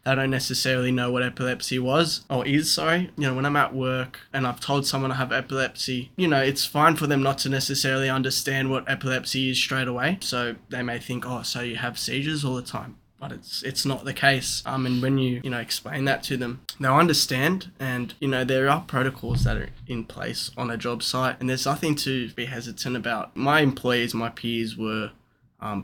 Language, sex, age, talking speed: English, male, 20-39, 220 wpm